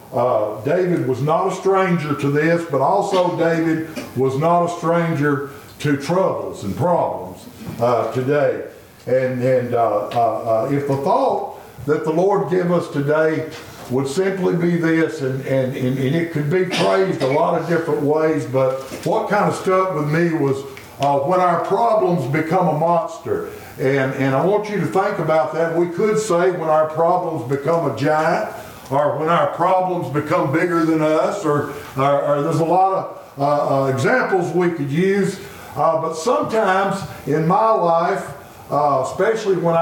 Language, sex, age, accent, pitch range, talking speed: English, male, 60-79, American, 140-185 Hz, 170 wpm